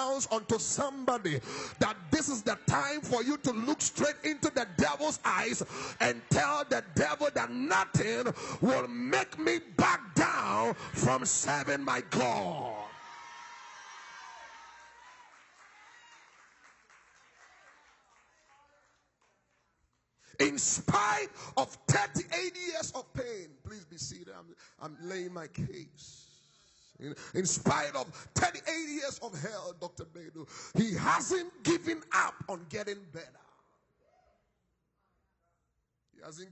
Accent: American